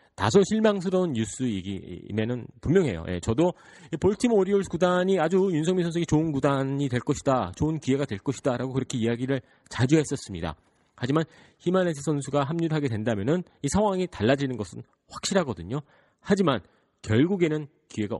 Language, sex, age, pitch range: Korean, male, 40-59, 100-155 Hz